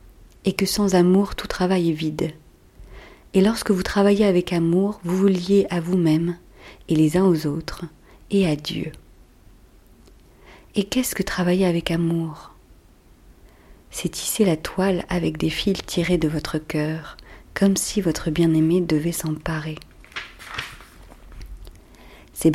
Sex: female